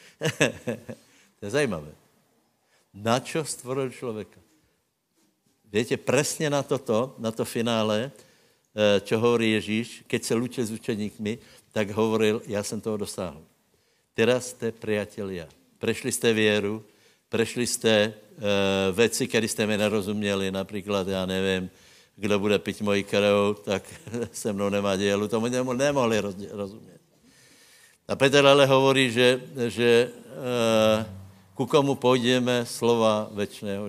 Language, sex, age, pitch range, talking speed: Slovak, male, 60-79, 105-125 Hz, 125 wpm